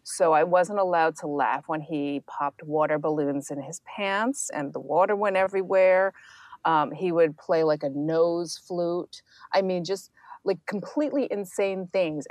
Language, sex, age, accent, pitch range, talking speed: English, female, 30-49, American, 155-195 Hz, 165 wpm